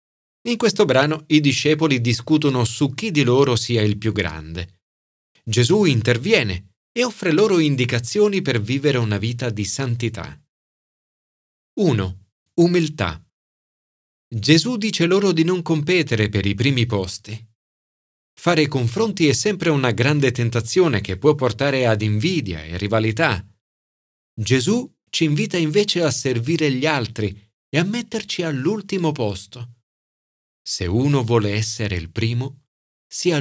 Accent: native